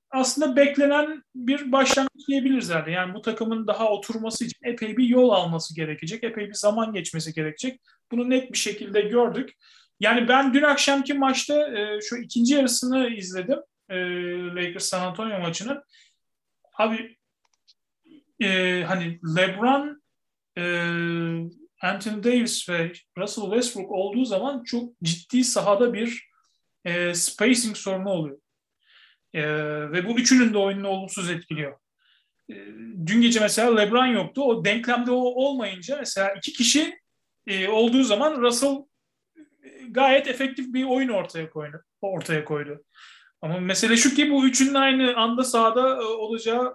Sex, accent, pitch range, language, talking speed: male, native, 185-255 Hz, Turkish, 135 wpm